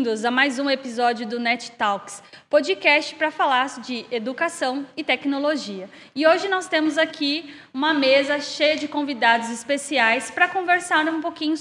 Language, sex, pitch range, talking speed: Portuguese, female, 240-310 Hz, 155 wpm